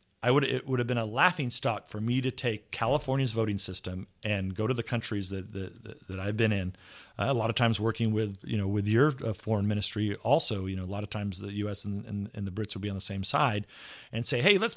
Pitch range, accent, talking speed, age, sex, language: 105-135 Hz, American, 265 wpm, 40-59, male, English